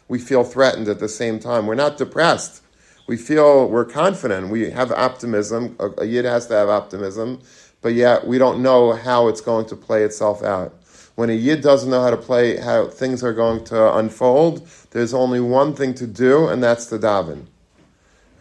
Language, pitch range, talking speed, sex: English, 105-120 Hz, 195 wpm, male